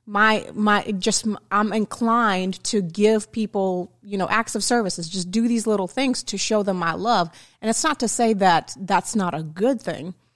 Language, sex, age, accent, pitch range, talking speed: English, female, 30-49, American, 190-225 Hz, 195 wpm